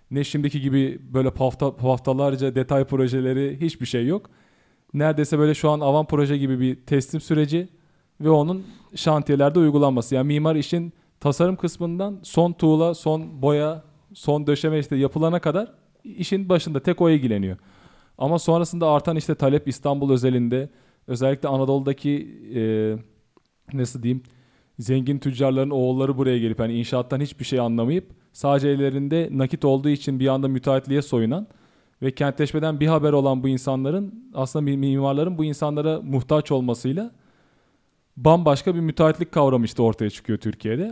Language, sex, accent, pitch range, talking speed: Turkish, male, native, 130-155 Hz, 140 wpm